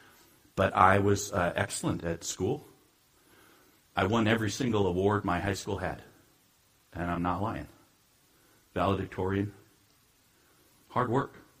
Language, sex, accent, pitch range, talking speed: English, male, American, 95-110 Hz, 120 wpm